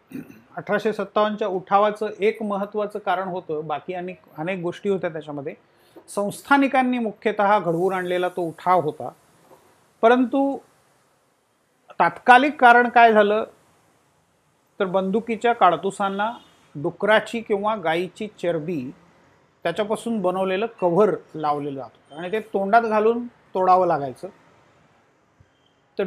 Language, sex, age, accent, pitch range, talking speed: Marathi, male, 40-59, native, 175-220 Hz, 100 wpm